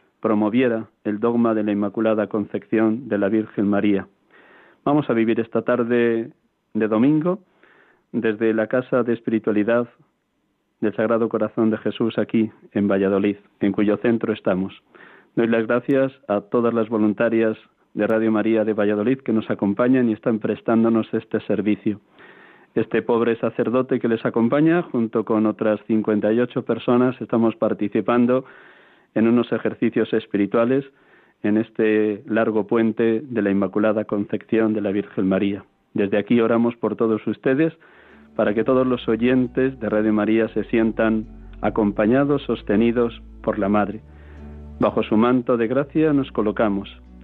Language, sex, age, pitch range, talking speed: Spanish, male, 40-59, 105-120 Hz, 145 wpm